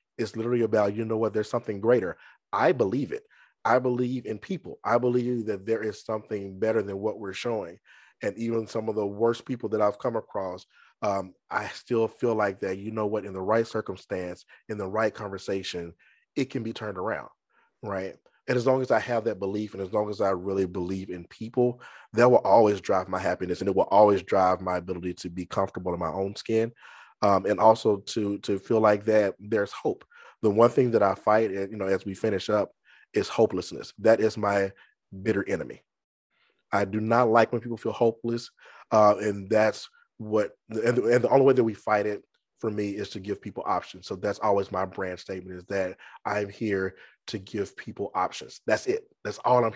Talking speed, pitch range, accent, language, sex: 210 wpm, 100-115 Hz, American, English, male